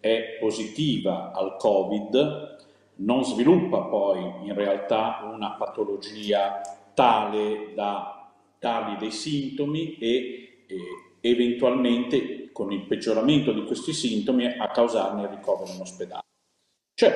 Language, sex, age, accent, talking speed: Italian, male, 40-59, native, 110 wpm